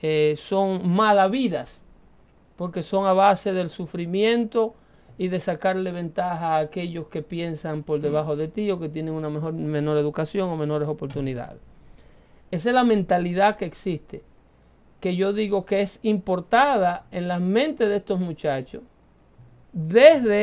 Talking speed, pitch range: 150 wpm, 175-225 Hz